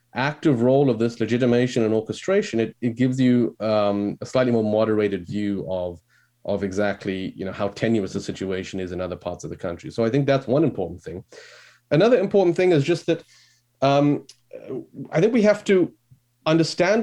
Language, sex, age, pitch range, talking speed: English, male, 30-49, 115-155 Hz, 185 wpm